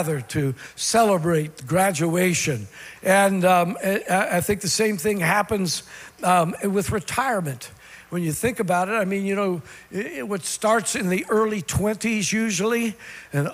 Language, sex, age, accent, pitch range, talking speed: English, male, 60-79, American, 175-220 Hz, 145 wpm